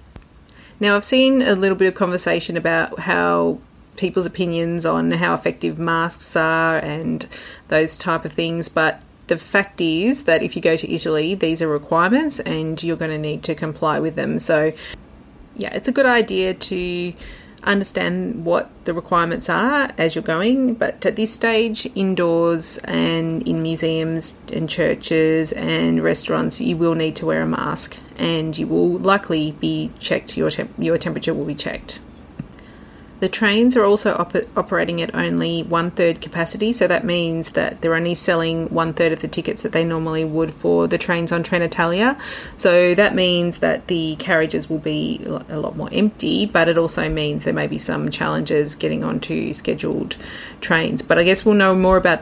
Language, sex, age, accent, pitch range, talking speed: English, female, 30-49, Australian, 155-185 Hz, 175 wpm